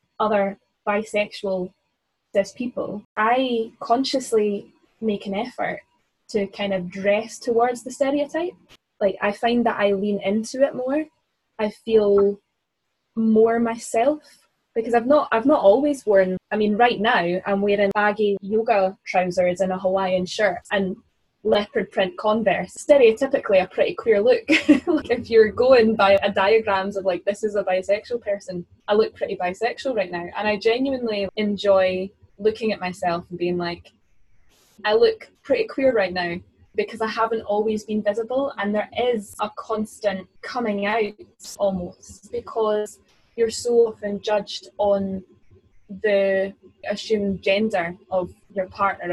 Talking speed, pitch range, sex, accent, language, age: 145 wpm, 195-230 Hz, female, British, English, 10-29